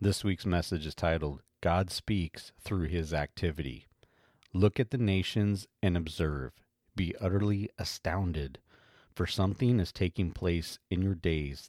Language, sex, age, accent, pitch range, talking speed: English, male, 40-59, American, 80-95 Hz, 140 wpm